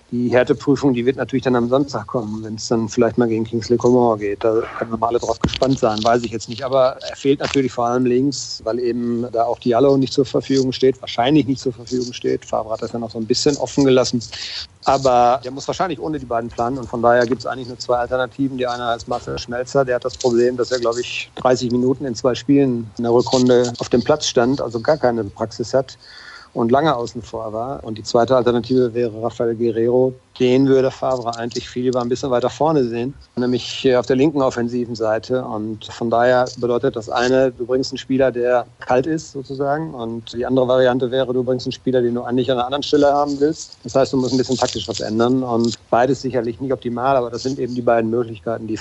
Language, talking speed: German, 235 wpm